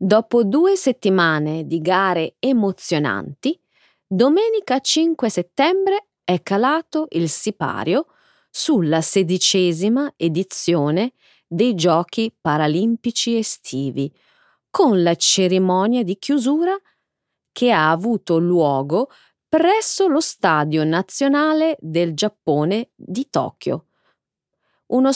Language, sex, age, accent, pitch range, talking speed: Italian, female, 30-49, native, 165-265 Hz, 90 wpm